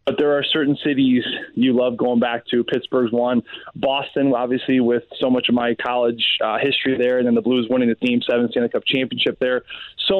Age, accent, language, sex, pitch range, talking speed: 20-39, American, English, male, 125-170 Hz, 210 wpm